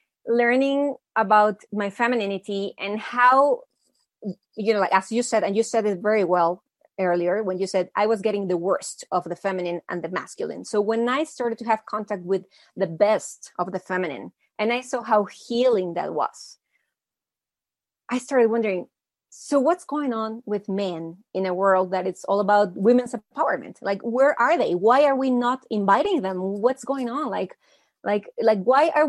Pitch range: 190-235 Hz